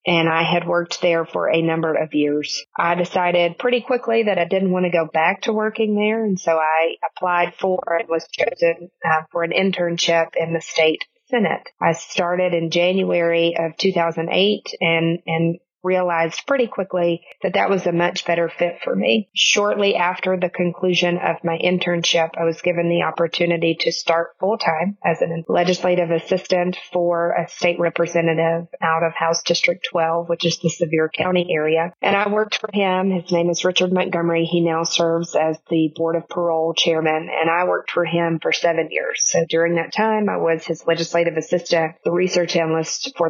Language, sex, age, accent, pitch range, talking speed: English, female, 30-49, American, 165-180 Hz, 185 wpm